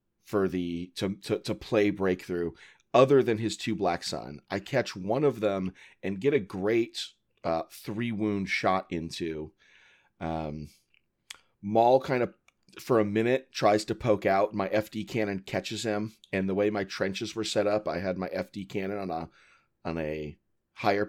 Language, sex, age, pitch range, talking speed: English, male, 40-59, 90-110 Hz, 170 wpm